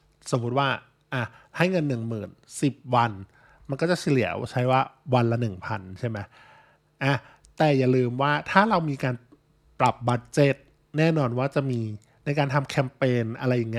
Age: 20-39